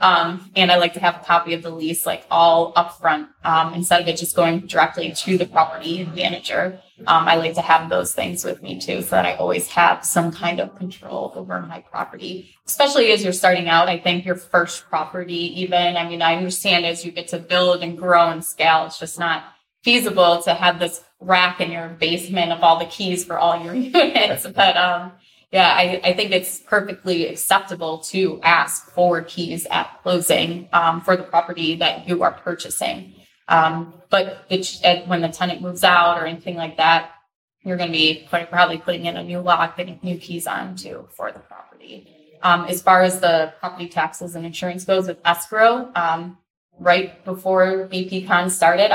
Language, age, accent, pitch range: English, 20-39, American, 165-180 Hz